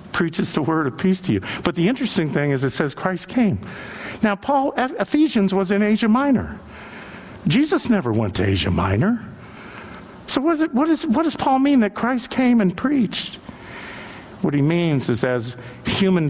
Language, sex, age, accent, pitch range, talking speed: English, male, 60-79, American, 105-155 Hz, 170 wpm